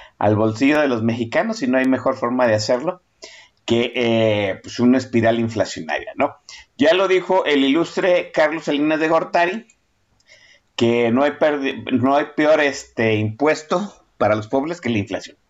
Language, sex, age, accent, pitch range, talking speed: Spanish, male, 50-69, Mexican, 115-160 Hz, 165 wpm